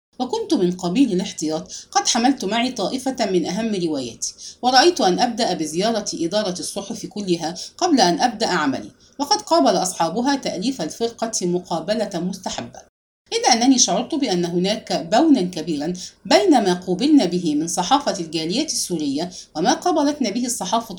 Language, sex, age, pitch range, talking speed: English, female, 50-69, 180-275 Hz, 140 wpm